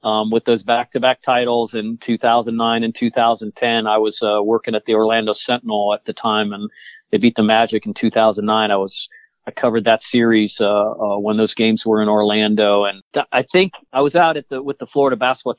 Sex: male